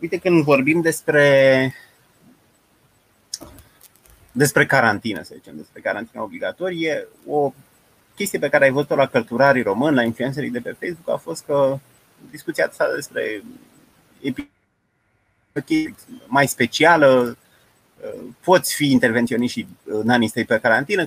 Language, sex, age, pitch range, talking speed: Romanian, male, 30-49, 125-160 Hz, 115 wpm